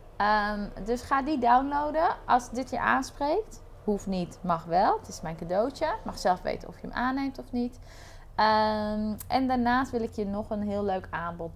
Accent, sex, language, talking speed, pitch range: Dutch, female, Dutch, 180 wpm, 170-235 Hz